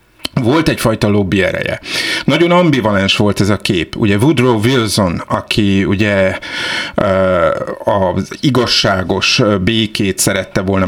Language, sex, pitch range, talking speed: Hungarian, male, 95-120 Hz, 110 wpm